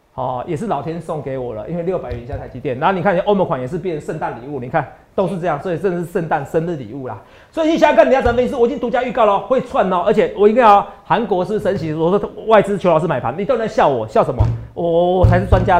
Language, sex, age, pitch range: Chinese, male, 40-59, 155-245 Hz